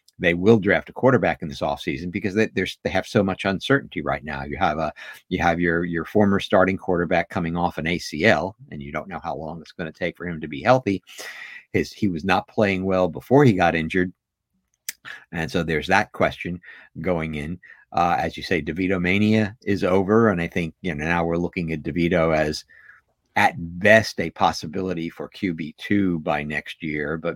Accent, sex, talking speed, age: American, male, 205 wpm, 50-69